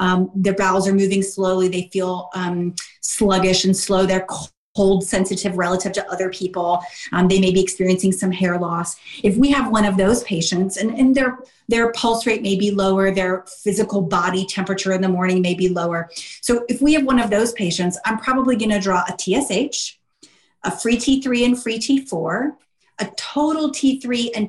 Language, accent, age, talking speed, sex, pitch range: English, American, 30-49, 190 wpm, female, 185-225 Hz